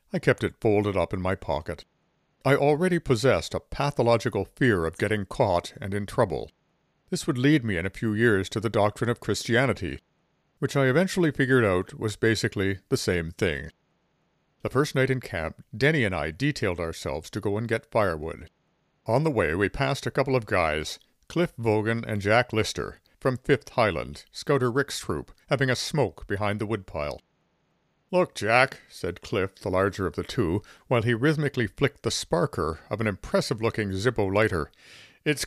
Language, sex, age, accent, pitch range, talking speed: English, male, 60-79, American, 100-140 Hz, 180 wpm